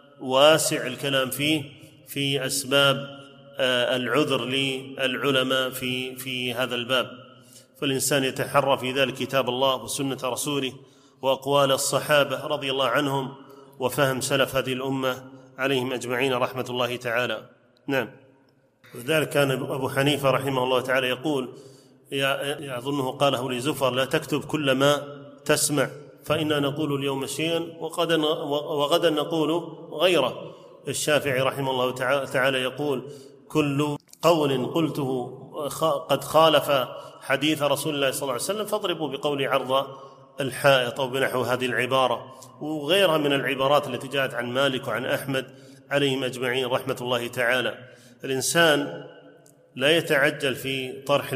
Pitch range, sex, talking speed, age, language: 130-145 Hz, male, 120 wpm, 30-49, Arabic